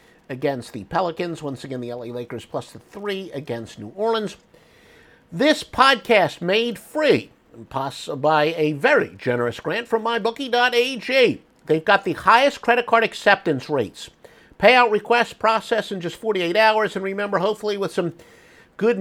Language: English